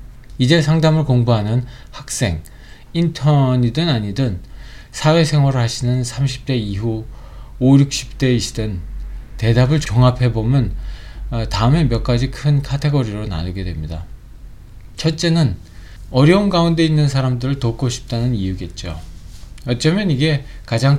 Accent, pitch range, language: native, 105-140 Hz, Korean